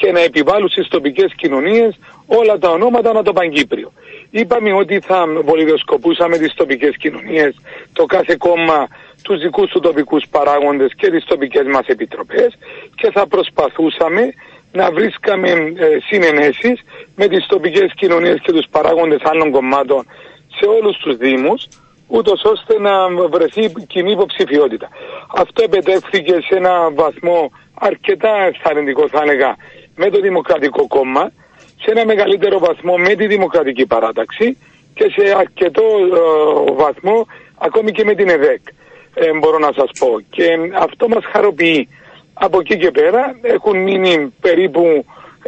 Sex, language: male, Greek